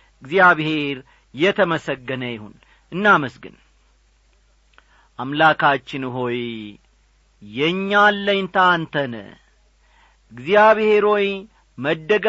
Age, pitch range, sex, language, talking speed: 40-59, 155-220 Hz, male, English, 95 wpm